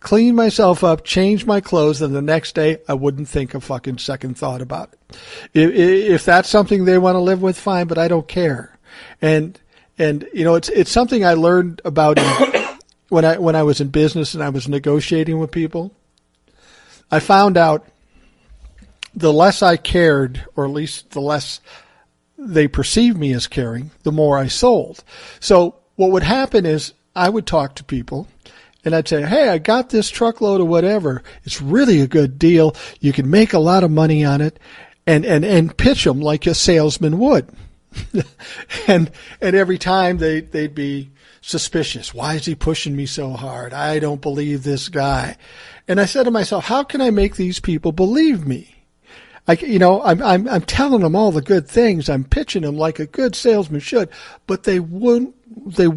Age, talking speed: 50-69, 190 wpm